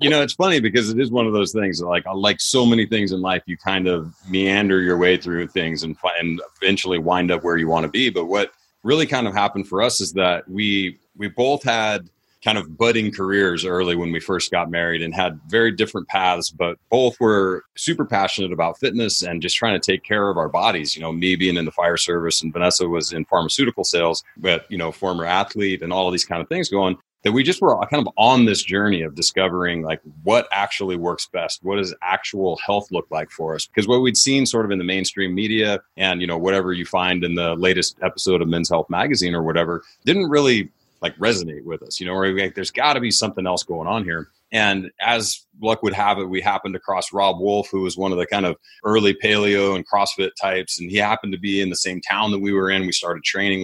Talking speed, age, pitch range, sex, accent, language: 240 wpm, 30-49, 90-105 Hz, male, American, English